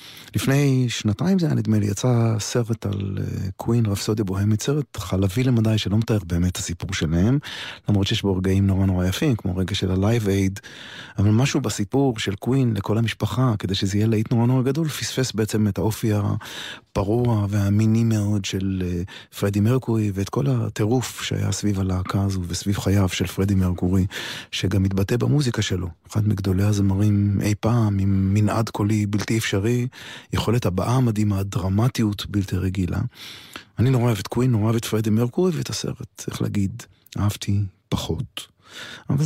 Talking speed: 160 wpm